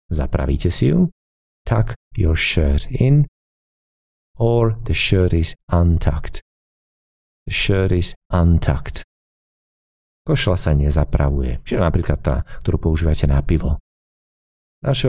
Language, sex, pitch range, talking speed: Slovak, male, 80-110 Hz, 105 wpm